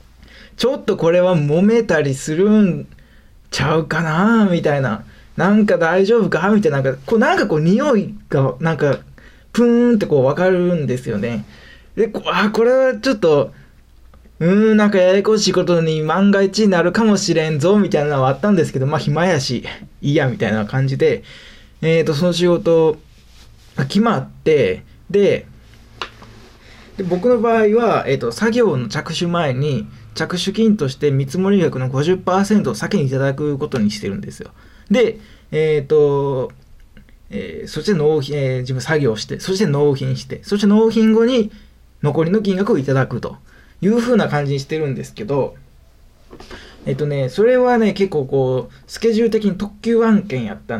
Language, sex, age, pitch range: Japanese, male, 20-39, 145-215 Hz